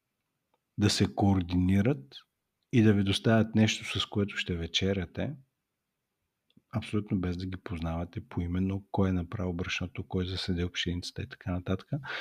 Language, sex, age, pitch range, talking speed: Bulgarian, male, 50-69, 90-110 Hz, 145 wpm